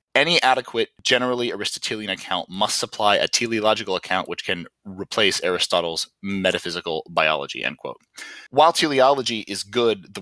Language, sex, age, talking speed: English, male, 20-39, 135 wpm